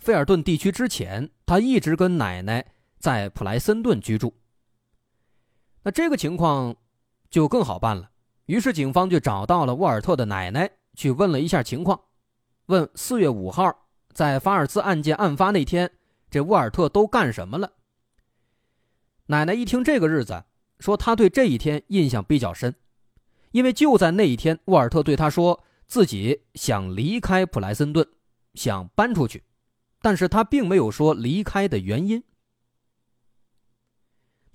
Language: Chinese